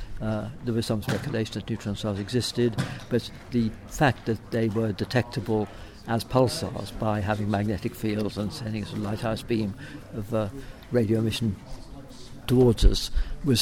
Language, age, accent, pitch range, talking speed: English, 60-79, British, 105-120 Hz, 150 wpm